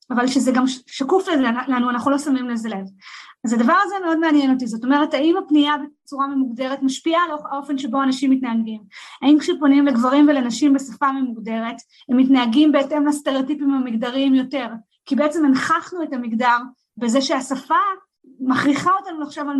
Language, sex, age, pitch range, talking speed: Hebrew, female, 20-39, 245-300 Hz, 160 wpm